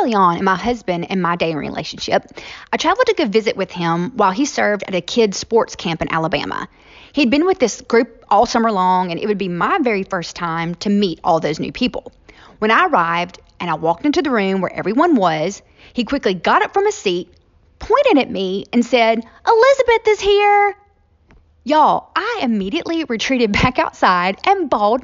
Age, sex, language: 30-49, female, English